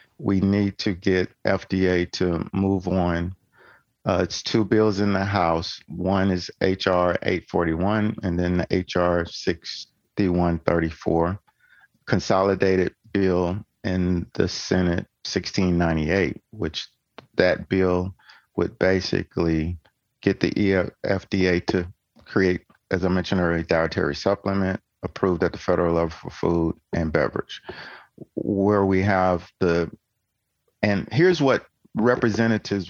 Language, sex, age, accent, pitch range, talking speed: English, male, 50-69, American, 90-100 Hz, 115 wpm